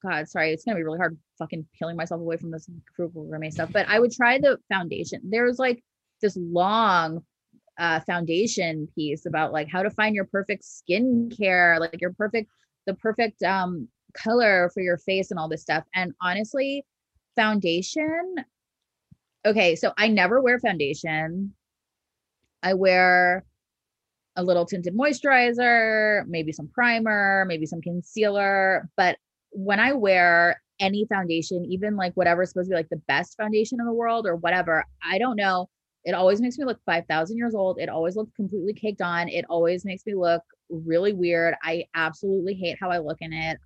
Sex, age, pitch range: female, 20-39, 170-215 Hz